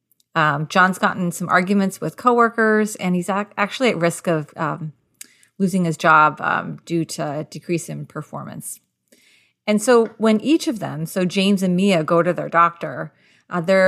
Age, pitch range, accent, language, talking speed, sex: 30-49, 170-215 Hz, American, English, 170 wpm, female